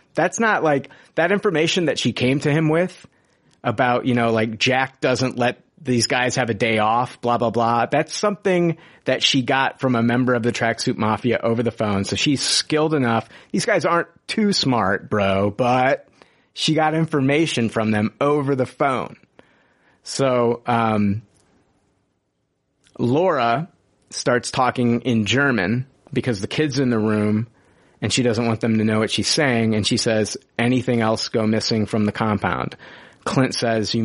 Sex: male